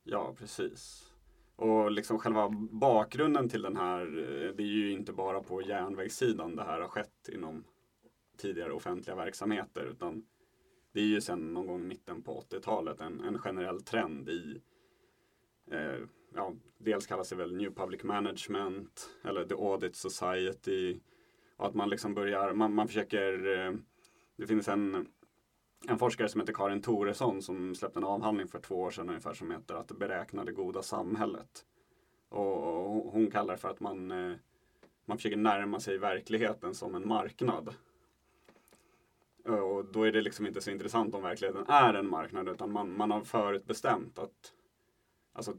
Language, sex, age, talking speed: Swedish, male, 30-49, 155 wpm